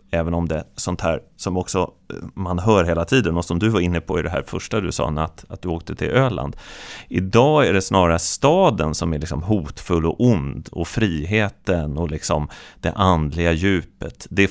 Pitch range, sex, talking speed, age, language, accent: 80-100 Hz, male, 205 wpm, 30-49, Swedish, native